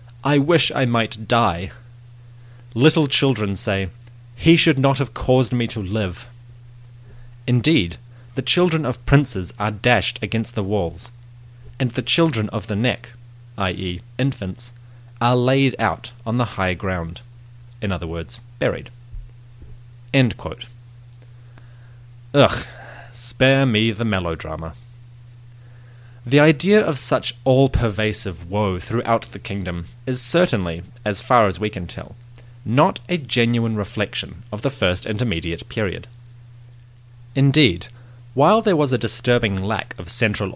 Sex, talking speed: male, 130 wpm